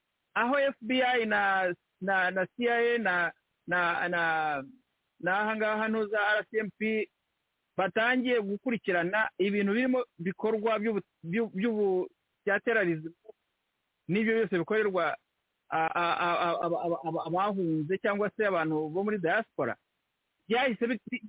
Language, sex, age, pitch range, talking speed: English, male, 60-79, 195-265 Hz, 90 wpm